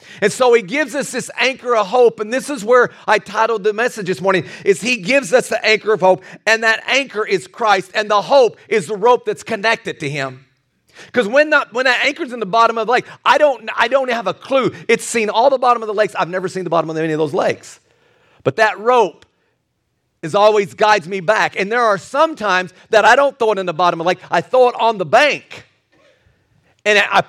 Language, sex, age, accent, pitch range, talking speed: English, male, 40-59, American, 200-255 Hz, 240 wpm